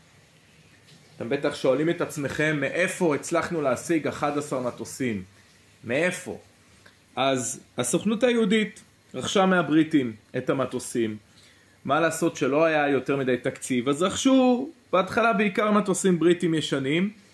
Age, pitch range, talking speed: 30-49, 120-165 Hz, 110 wpm